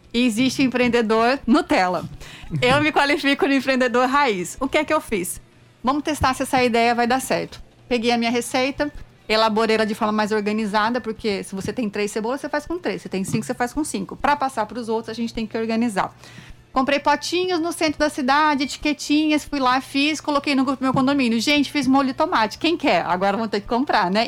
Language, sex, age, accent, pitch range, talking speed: Portuguese, female, 30-49, Brazilian, 235-295 Hz, 215 wpm